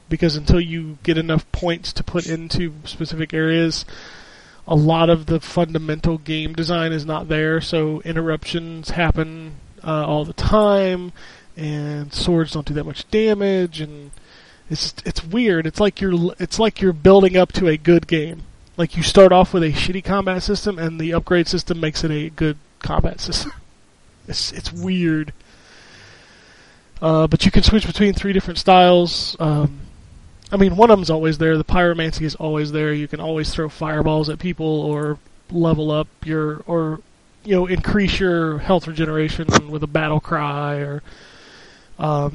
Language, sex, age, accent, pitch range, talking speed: English, male, 20-39, American, 155-175 Hz, 170 wpm